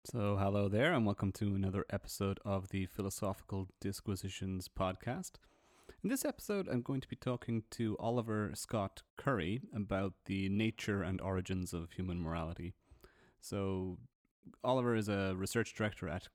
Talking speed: 145 wpm